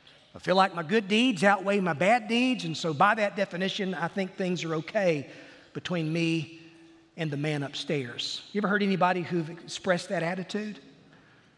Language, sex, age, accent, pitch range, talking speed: English, male, 40-59, American, 160-200 Hz, 175 wpm